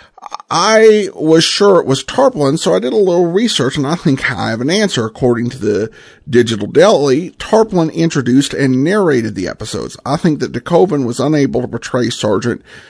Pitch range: 120-175 Hz